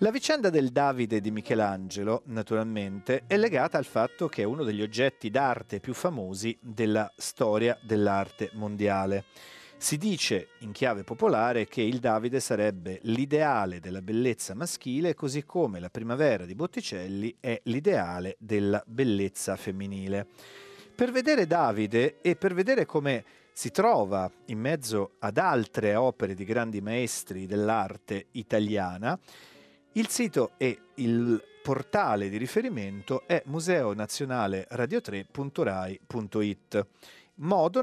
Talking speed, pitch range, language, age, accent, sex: 120 wpm, 100-140 Hz, Italian, 40-59, native, male